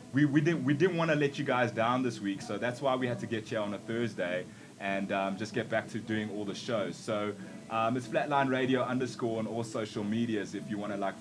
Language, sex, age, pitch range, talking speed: English, male, 20-39, 105-130 Hz, 260 wpm